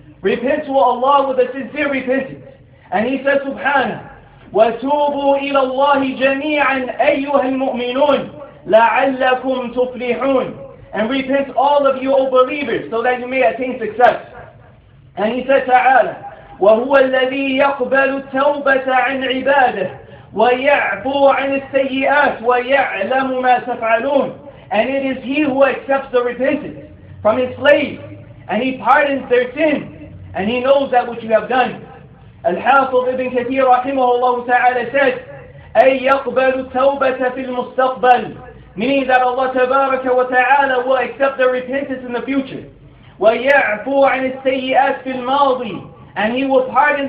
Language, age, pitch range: English, 40-59, 250-275 Hz